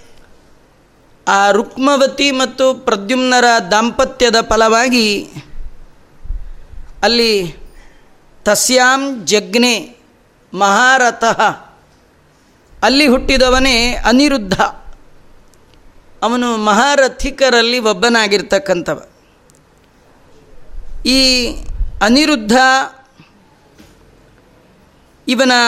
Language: Kannada